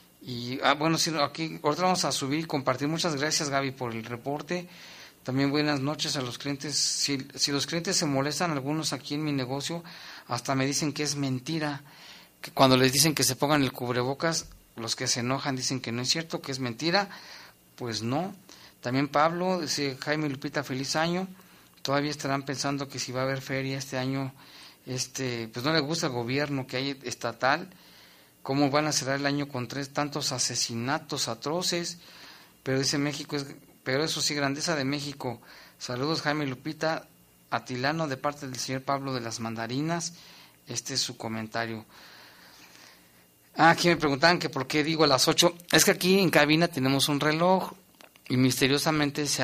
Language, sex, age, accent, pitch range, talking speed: Spanish, male, 40-59, Mexican, 130-155 Hz, 185 wpm